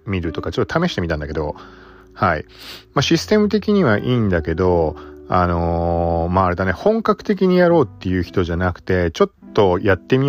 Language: Japanese